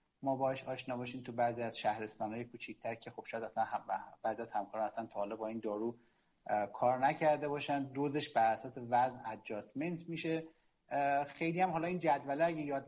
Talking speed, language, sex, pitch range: 175 wpm, Persian, male, 120-155 Hz